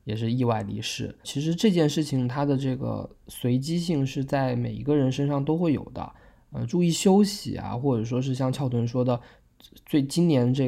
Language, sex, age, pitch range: Chinese, male, 20-39, 115-140 Hz